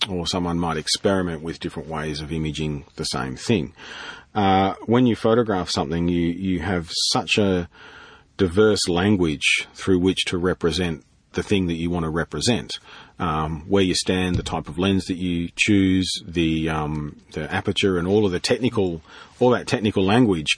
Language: English